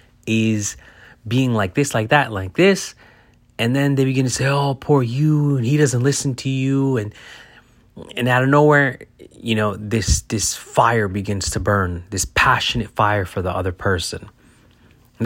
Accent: American